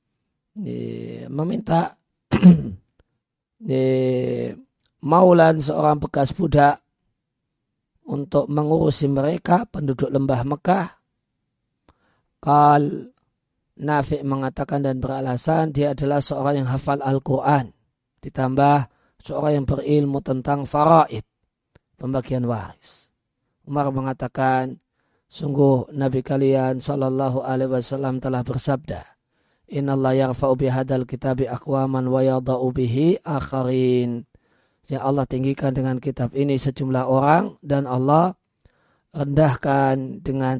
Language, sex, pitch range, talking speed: Indonesian, male, 130-150 Hz, 80 wpm